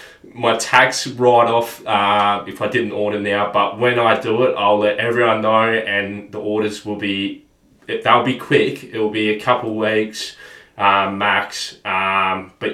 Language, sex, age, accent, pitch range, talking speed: English, male, 20-39, Australian, 100-115 Hz, 165 wpm